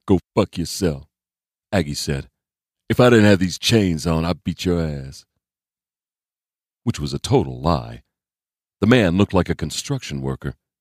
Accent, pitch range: American, 75-105 Hz